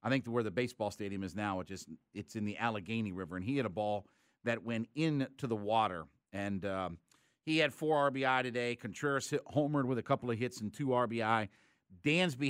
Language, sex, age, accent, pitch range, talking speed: English, male, 50-69, American, 110-140 Hz, 200 wpm